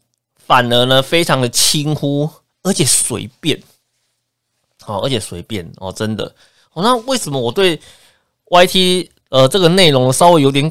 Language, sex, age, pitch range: Chinese, male, 20-39, 115-150 Hz